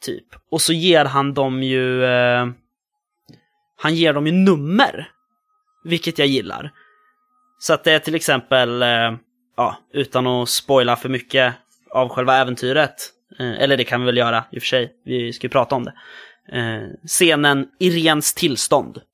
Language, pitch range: Swedish, 125-175 Hz